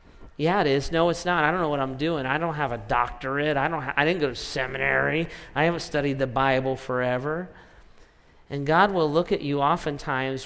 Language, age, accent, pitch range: English, 40-59, American, 140-180 Hz